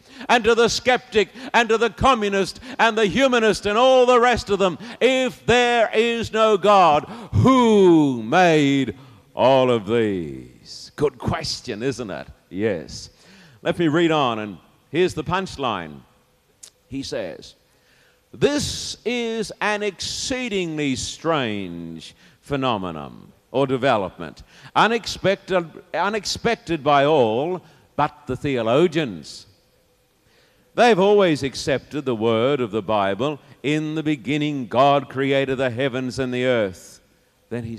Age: 50-69